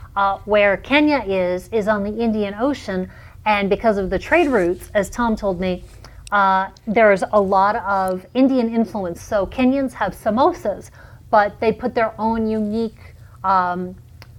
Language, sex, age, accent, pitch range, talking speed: English, female, 30-49, American, 195-235 Hz, 155 wpm